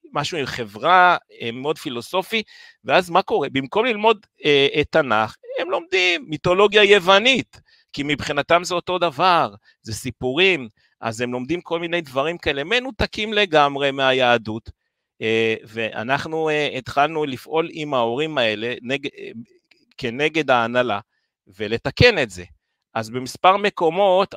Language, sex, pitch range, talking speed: Hebrew, male, 125-180 Hz, 130 wpm